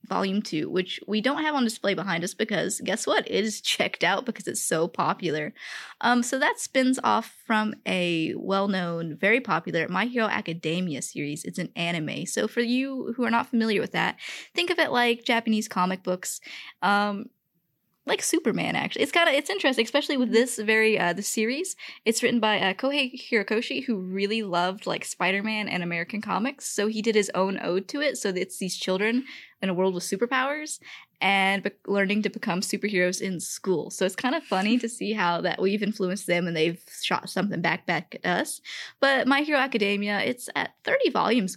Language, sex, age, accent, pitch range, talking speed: English, female, 10-29, American, 190-245 Hz, 200 wpm